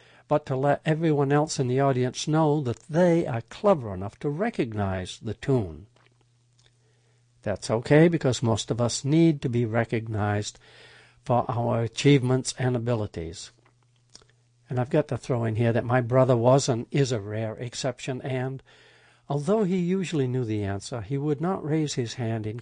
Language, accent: English, American